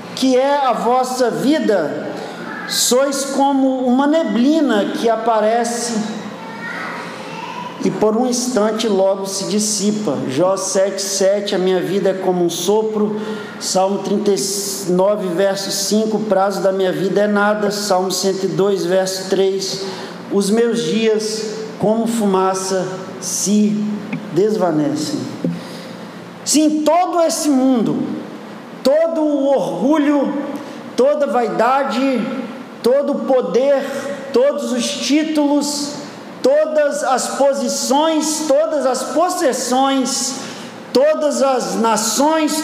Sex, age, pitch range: male, 50-69, 210-275 Hz